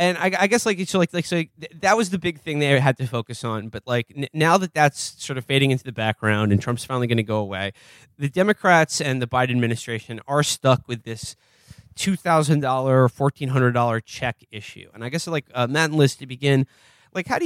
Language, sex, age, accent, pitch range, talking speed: English, male, 20-39, American, 115-150 Hz, 250 wpm